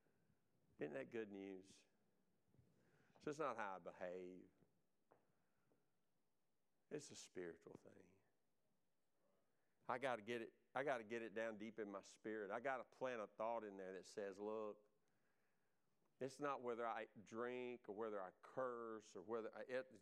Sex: male